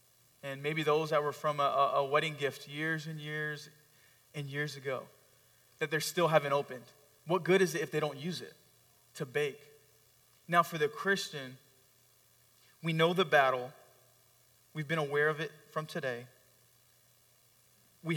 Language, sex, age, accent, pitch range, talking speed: English, male, 20-39, American, 130-165 Hz, 160 wpm